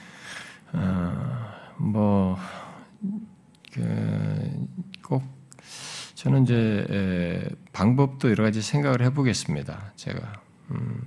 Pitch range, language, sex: 95-135 Hz, Korean, male